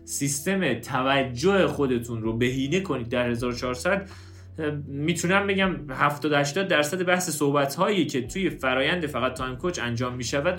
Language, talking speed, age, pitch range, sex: Persian, 125 wpm, 30-49, 115-180 Hz, male